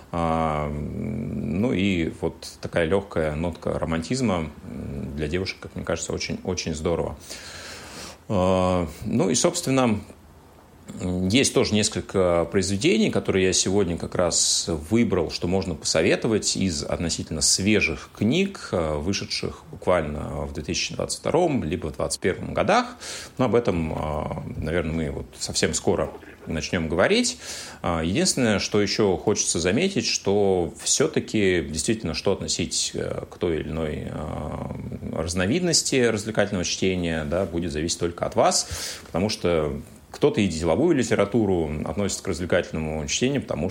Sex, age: male, 30-49